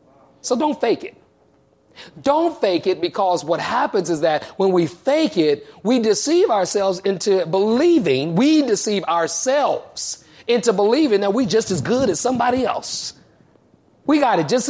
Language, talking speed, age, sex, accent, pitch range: English, 155 wpm, 40-59, male, American, 185-270 Hz